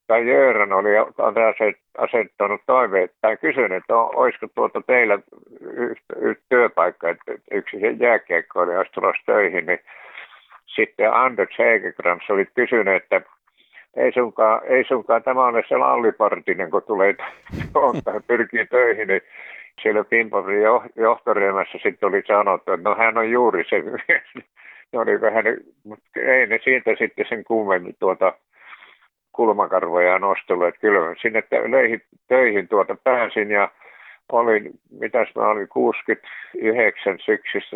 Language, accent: Finnish, native